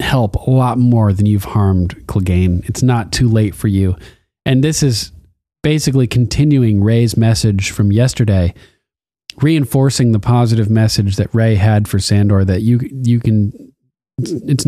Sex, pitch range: male, 105-125 Hz